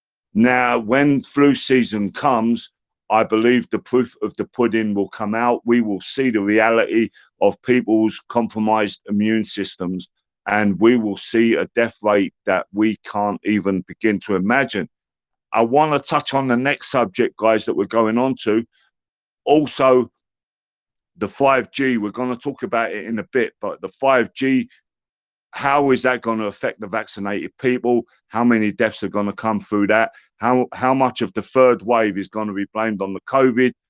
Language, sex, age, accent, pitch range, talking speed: English, male, 50-69, British, 105-125 Hz, 180 wpm